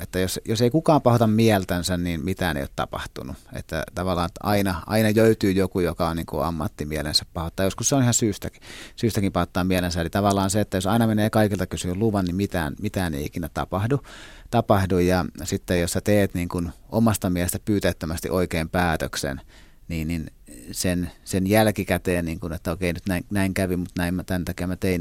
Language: Finnish